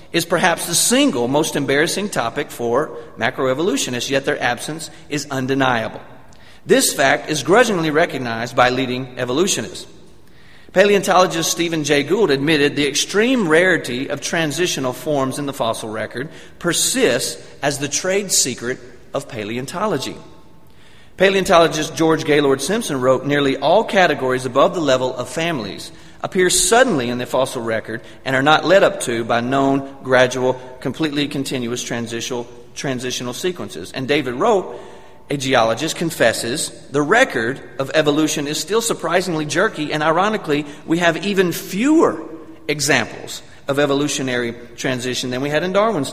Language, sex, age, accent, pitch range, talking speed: English, male, 40-59, American, 130-170 Hz, 140 wpm